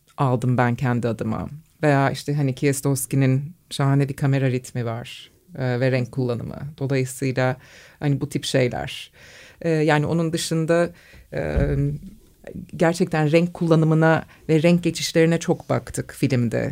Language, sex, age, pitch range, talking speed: Turkish, female, 30-49, 140-170 Hz, 130 wpm